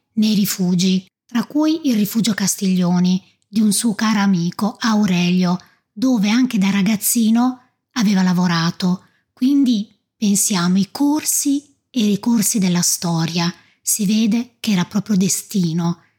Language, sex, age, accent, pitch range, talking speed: Italian, female, 20-39, native, 190-245 Hz, 125 wpm